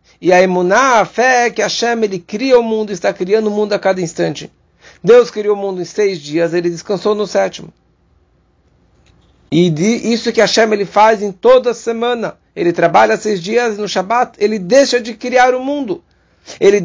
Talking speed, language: 190 wpm, English